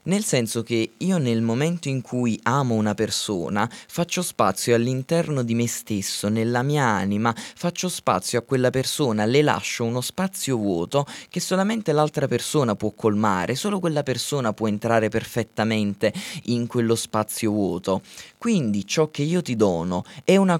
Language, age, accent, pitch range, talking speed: Italian, 20-39, native, 110-145 Hz, 155 wpm